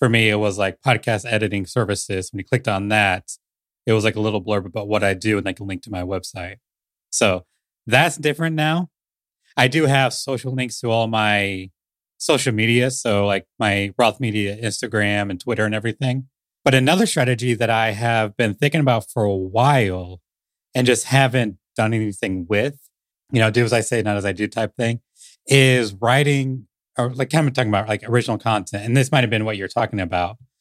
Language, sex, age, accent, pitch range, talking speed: English, male, 30-49, American, 105-125 Hz, 200 wpm